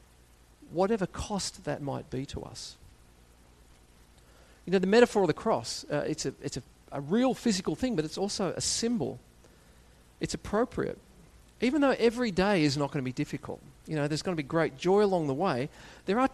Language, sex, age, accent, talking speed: English, male, 40-59, Australian, 195 wpm